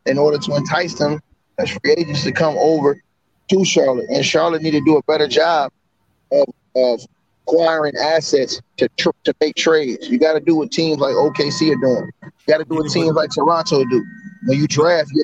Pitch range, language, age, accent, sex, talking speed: 150-180 Hz, English, 30-49, American, male, 215 wpm